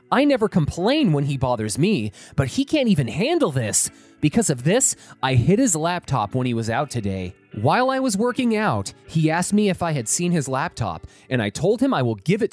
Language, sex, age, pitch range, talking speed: English, male, 30-49, 120-190 Hz, 225 wpm